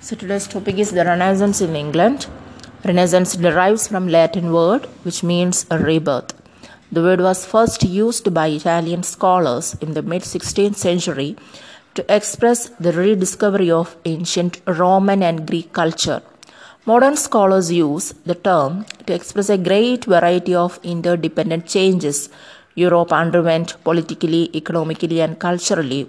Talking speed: 140 wpm